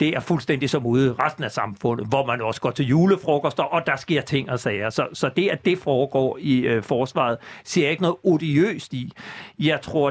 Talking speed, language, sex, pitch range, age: 225 wpm, Danish, male, 130-170 Hz, 60-79